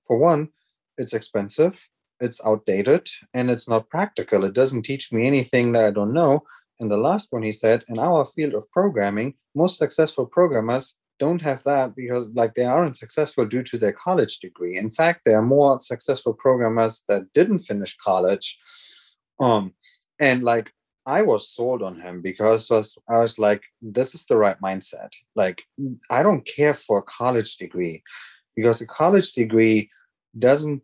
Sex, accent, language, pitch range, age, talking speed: male, German, English, 110-140 Hz, 30-49, 170 wpm